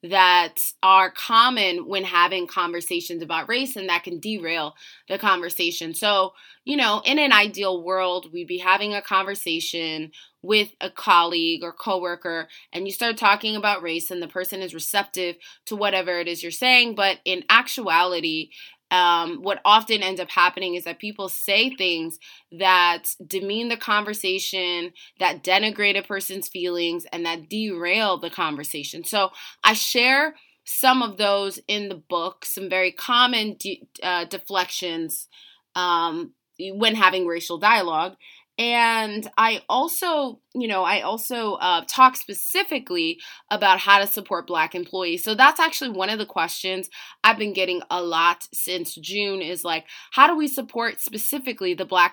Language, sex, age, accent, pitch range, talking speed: English, female, 20-39, American, 175-225 Hz, 155 wpm